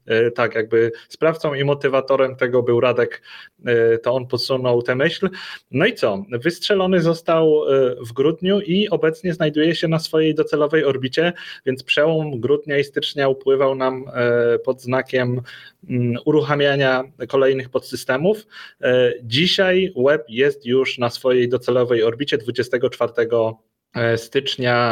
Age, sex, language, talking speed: 30-49, male, Polish, 120 wpm